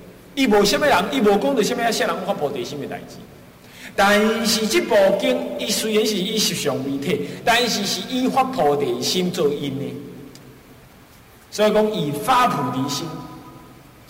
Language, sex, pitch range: Chinese, male, 165-265 Hz